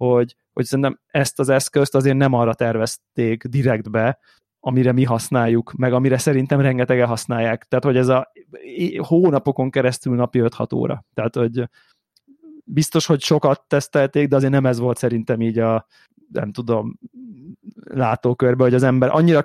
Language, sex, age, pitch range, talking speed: Hungarian, male, 20-39, 115-135 Hz, 155 wpm